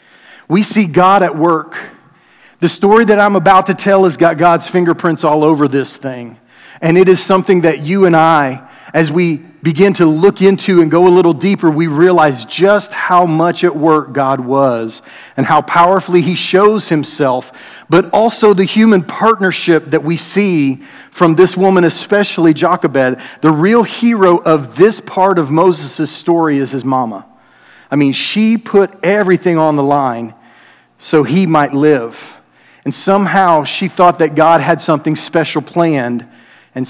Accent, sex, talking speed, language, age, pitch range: American, male, 165 wpm, English, 40-59, 145-185 Hz